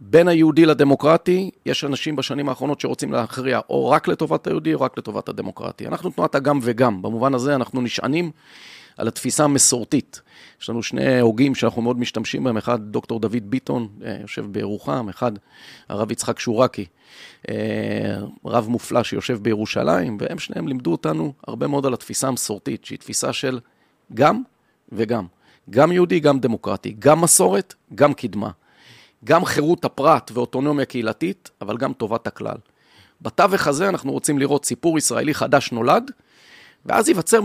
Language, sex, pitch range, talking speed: Hebrew, male, 115-150 Hz, 145 wpm